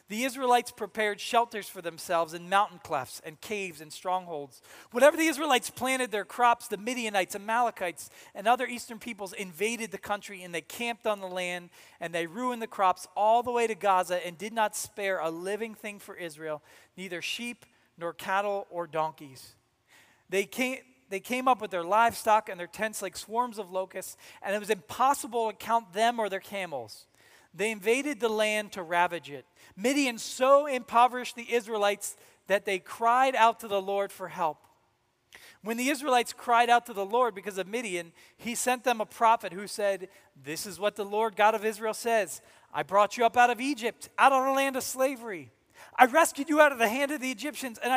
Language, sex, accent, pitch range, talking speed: English, male, American, 190-245 Hz, 195 wpm